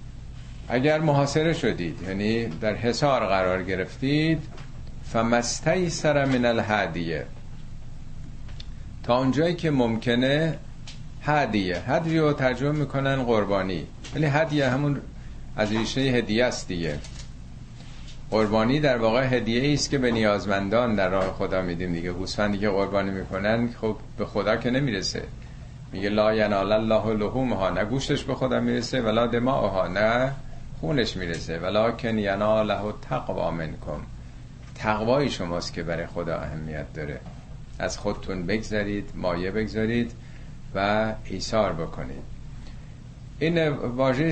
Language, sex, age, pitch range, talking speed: Persian, male, 50-69, 95-130 Hz, 120 wpm